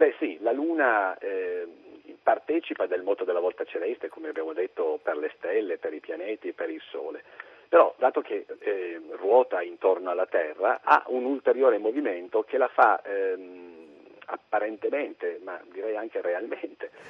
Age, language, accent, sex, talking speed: 50-69, Italian, native, male, 160 wpm